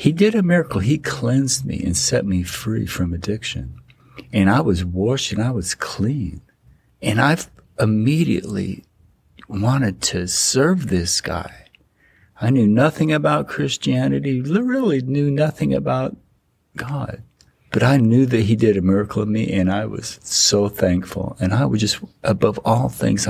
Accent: American